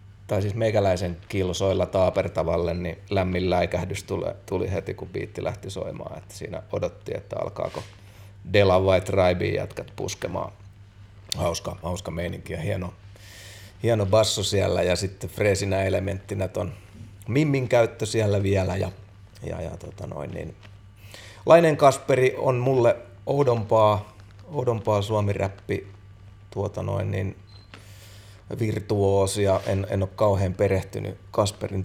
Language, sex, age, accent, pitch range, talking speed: Finnish, male, 30-49, native, 95-105 Hz, 120 wpm